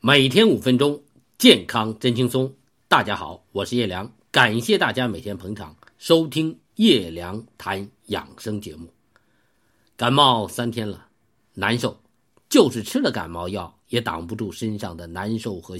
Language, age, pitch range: Chinese, 50-69, 100-130 Hz